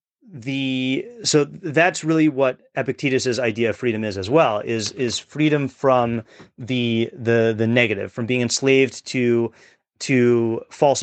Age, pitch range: 30-49, 115-140 Hz